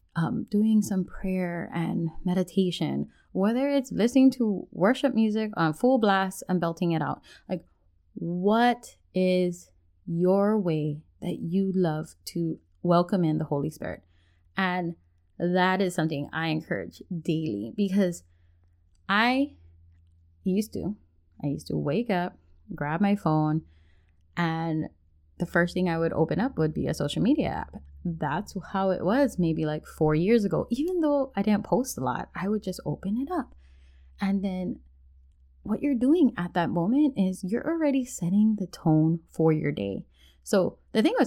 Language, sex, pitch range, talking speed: English, female, 155-210 Hz, 160 wpm